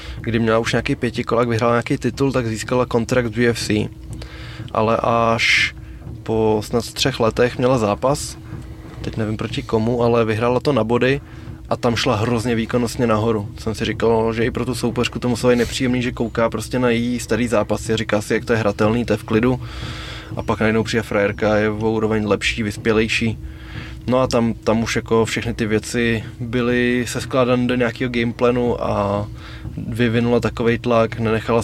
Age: 20-39